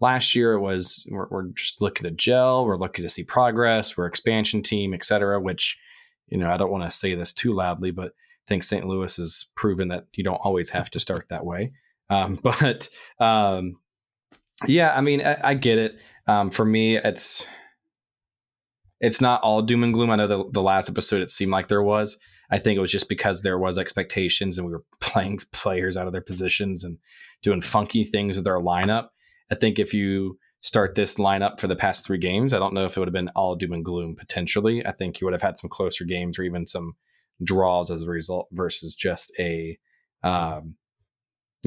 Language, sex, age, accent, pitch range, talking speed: English, male, 20-39, American, 90-110 Hz, 215 wpm